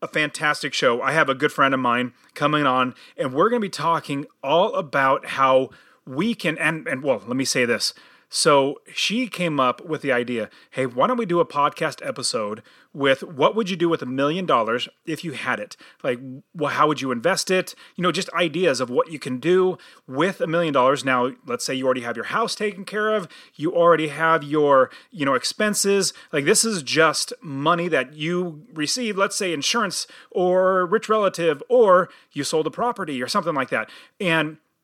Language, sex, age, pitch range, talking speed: English, male, 30-49, 135-195 Hz, 205 wpm